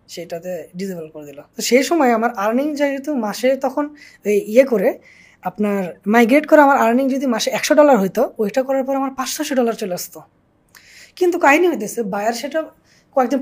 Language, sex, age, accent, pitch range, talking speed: Bengali, female, 20-39, native, 170-265 Hz, 170 wpm